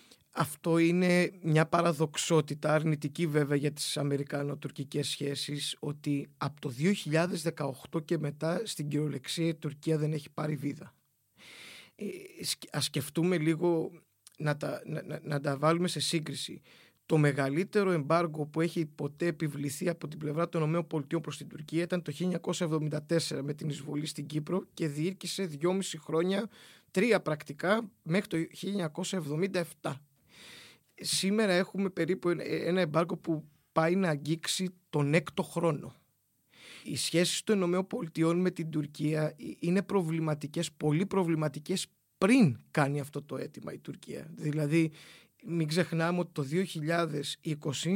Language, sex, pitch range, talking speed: Greek, male, 150-180 Hz, 135 wpm